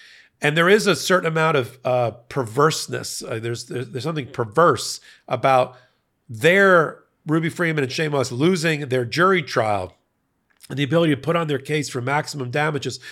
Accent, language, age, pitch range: American, English, 40-59, 125-150 Hz